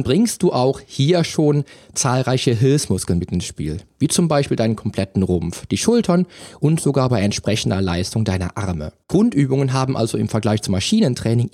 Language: German